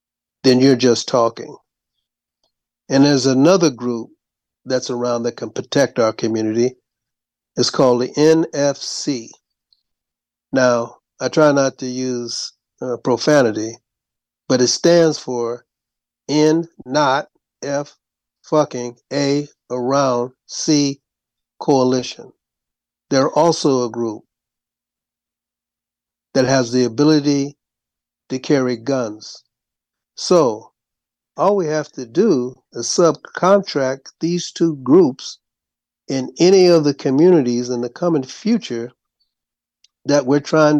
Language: English